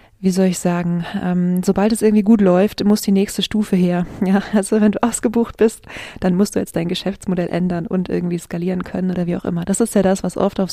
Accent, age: German, 20-39